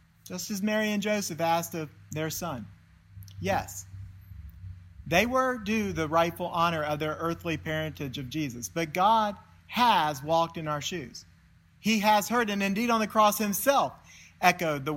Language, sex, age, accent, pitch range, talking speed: English, male, 40-59, American, 140-170 Hz, 160 wpm